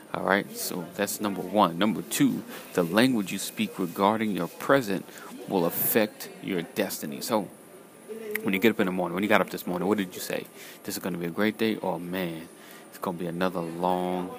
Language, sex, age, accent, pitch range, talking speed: English, male, 30-49, American, 95-115 Hz, 215 wpm